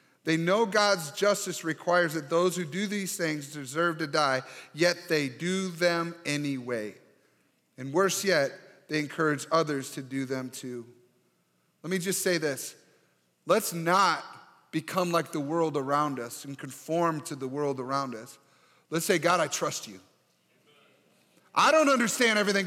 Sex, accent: male, American